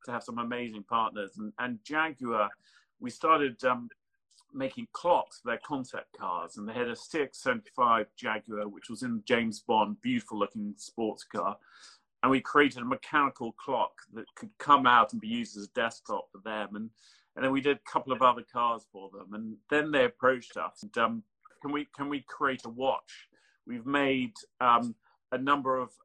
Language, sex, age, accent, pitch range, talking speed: English, male, 40-59, British, 110-145 Hz, 190 wpm